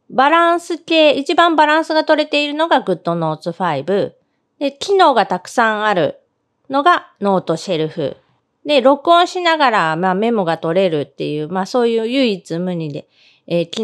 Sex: female